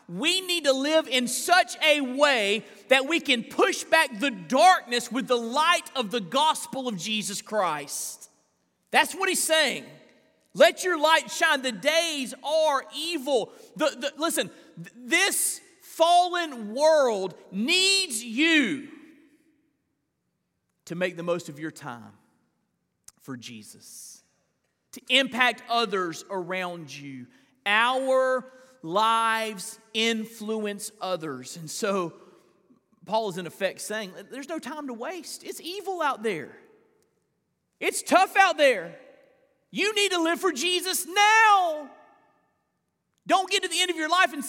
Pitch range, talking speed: 190-320 Hz, 130 wpm